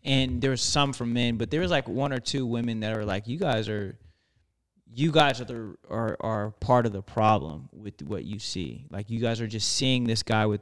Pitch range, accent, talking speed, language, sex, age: 105-130 Hz, American, 245 wpm, English, male, 20-39